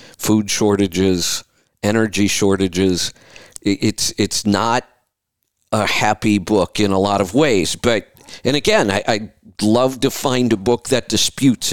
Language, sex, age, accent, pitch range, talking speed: English, male, 50-69, American, 100-120 Hz, 140 wpm